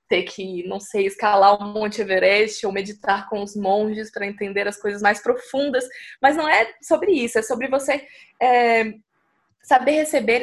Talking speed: 165 wpm